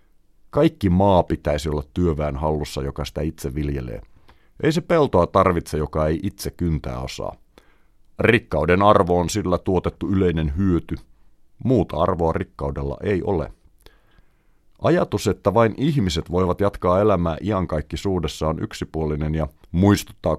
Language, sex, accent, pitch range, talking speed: Finnish, male, native, 75-100 Hz, 125 wpm